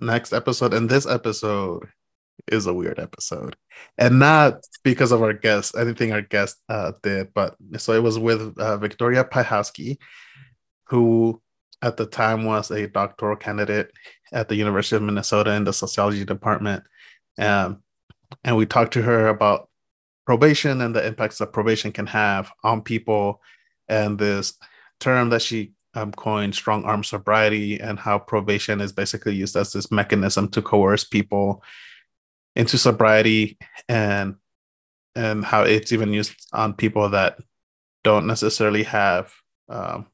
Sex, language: male, English